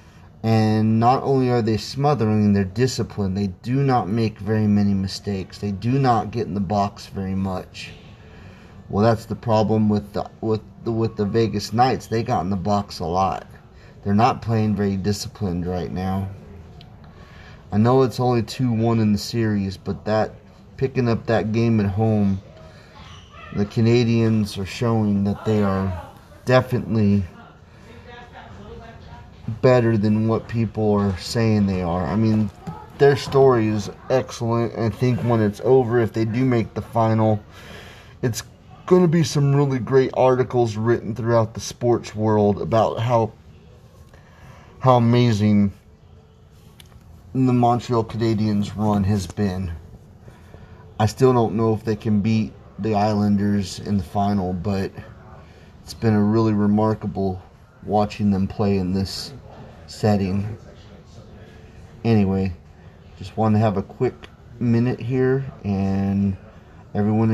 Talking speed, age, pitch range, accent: 140 wpm, 30-49, 100-115 Hz, American